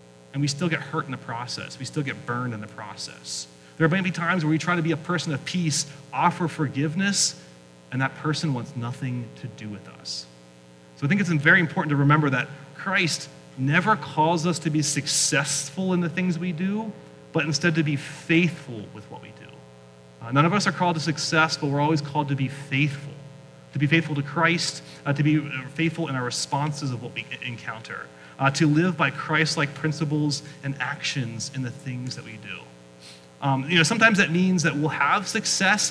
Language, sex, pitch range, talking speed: English, male, 130-165 Hz, 205 wpm